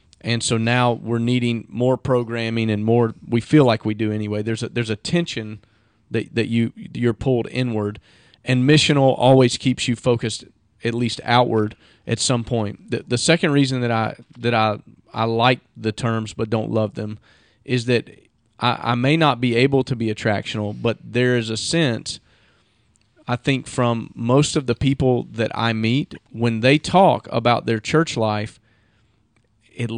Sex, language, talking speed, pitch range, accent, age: male, English, 180 wpm, 110-130 Hz, American, 40-59